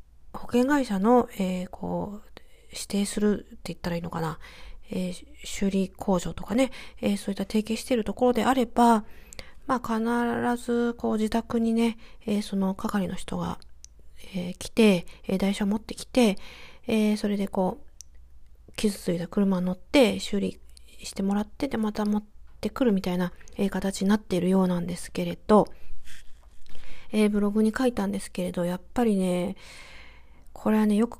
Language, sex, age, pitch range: Japanese, female, 40-59, 180-225 Hz